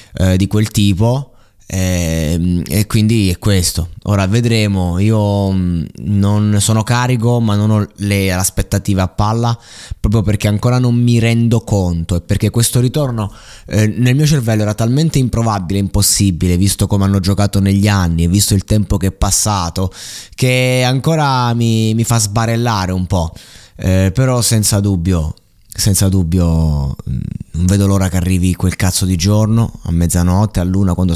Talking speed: 160 wpm